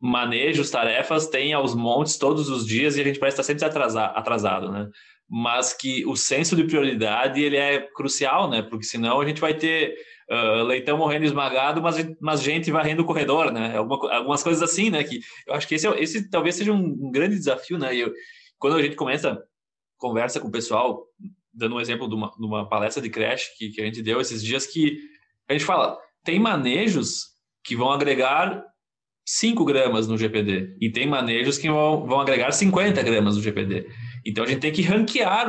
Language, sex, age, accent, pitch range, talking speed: Portuguese, male, 20-39, Brazilian, 115-170 Hz, 200 wpm